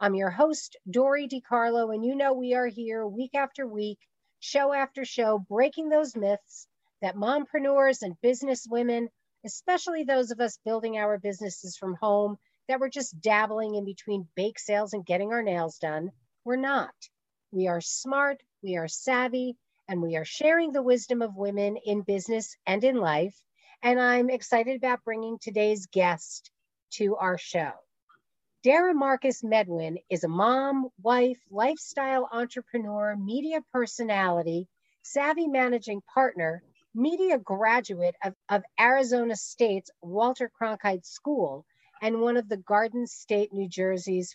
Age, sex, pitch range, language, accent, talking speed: 40-59, female, 195-260 Hz, English, American, 145 wpm